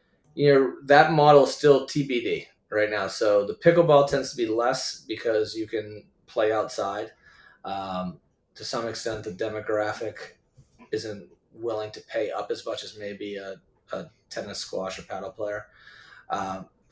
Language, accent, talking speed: English, American, 155 wpm